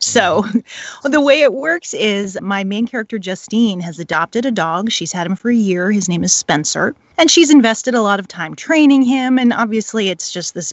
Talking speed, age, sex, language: 215 wpm, 30-49, female, English